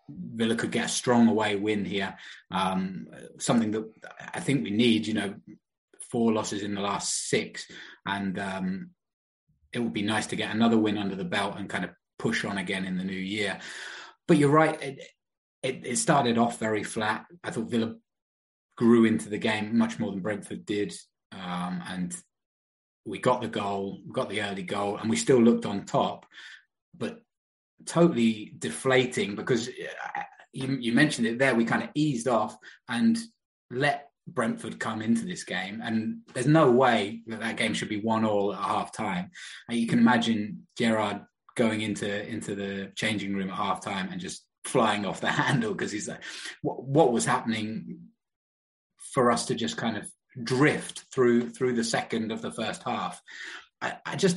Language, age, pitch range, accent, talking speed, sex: English, 20-39, 100-120 Hz, British, 180 wpm, male